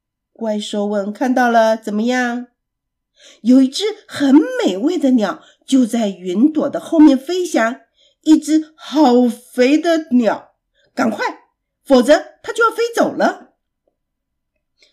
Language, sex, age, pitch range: Chinese, female, 50-69, 245-325 Hz